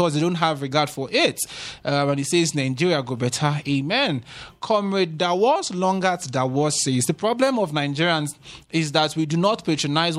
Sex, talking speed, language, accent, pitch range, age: male, 175 wpm, English, Nigerian, 145-190 Hz, 20-39